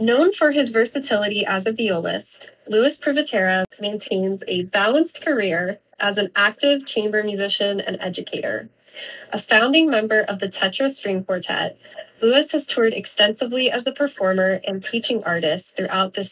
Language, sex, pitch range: English, female, 190-235 Hz